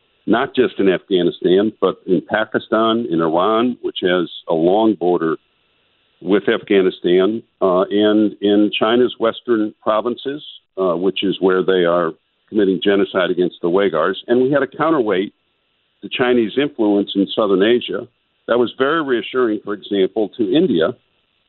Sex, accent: male, American